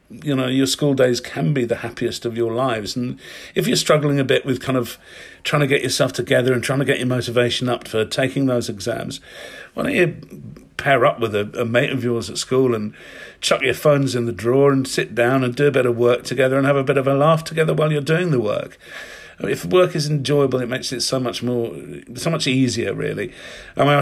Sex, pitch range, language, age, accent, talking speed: male, 120-145 Hz, English, 50-69, British, 245 wpm